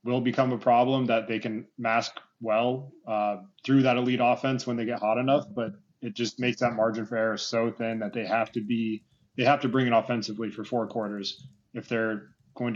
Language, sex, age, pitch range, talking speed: English, male, 20-39, 110-125 Hz, 215 wpm